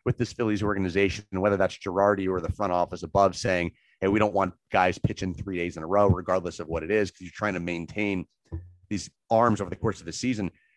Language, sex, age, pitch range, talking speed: English, male, 30-49, 95-125 Hz, 240 wpm